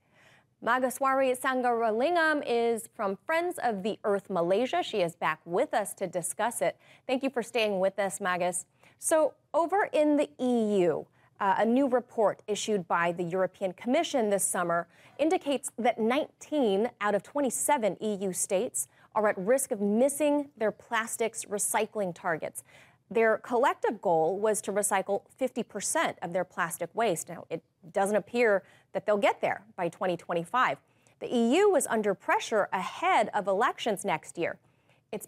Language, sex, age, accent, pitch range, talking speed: English, female, 30-49, American, 190-265 Hz, 150 wpm